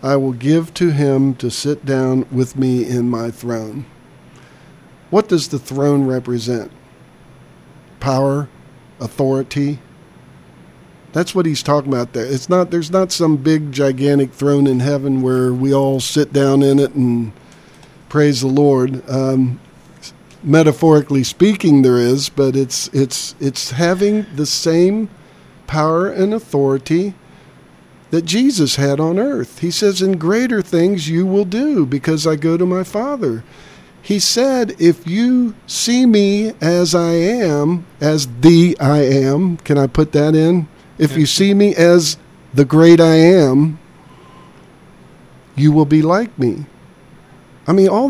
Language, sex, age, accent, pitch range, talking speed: English, male, 50-69, American, 135-180 Hz, 145 wpm